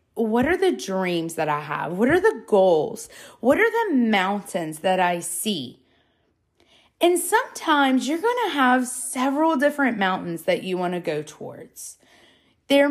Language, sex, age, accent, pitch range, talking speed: English, female, 20-39, American, 185-260 Hz, 160 wpm